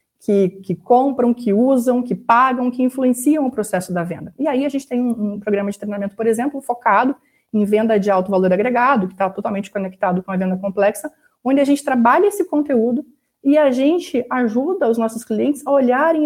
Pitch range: 200-255 Hz